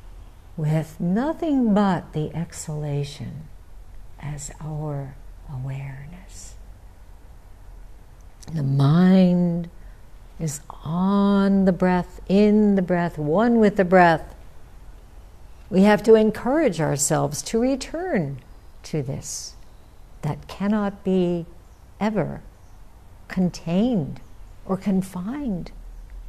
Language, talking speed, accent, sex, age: English, 85 wpm, American, female, 60-79